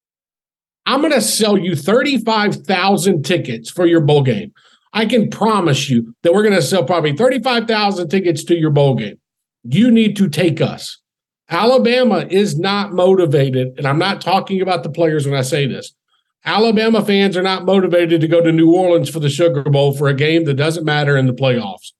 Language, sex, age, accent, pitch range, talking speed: English, male, 50-69, American, 135-185 Hz, 190 wpm